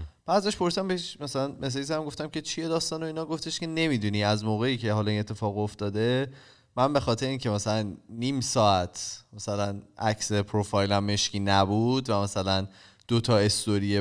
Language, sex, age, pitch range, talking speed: Persian, male, 20-39, 100-135 Hz, 165 wpm